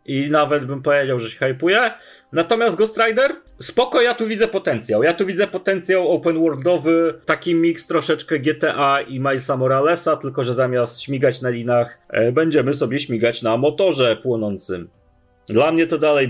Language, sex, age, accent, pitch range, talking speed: Polish, male, 30-49, native, 115-150 Hz, 160 wpm